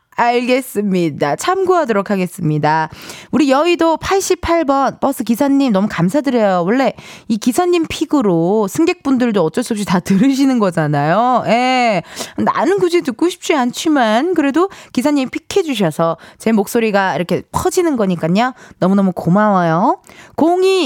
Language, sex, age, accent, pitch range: Korean, female, 20-39, native, 190-310 Hz